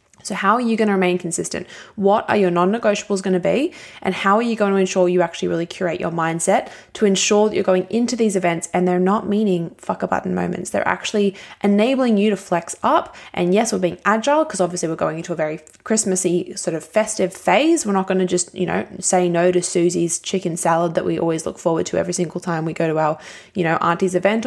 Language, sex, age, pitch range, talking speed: English, female, 10-29, 175-210 Hz, 240 wpm